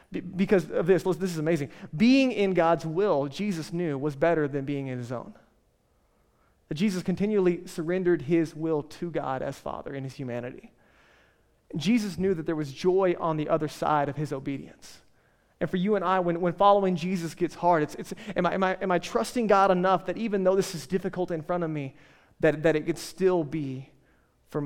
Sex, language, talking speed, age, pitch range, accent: male, English, 200 wpm, 30-49, 165-200 Hz, American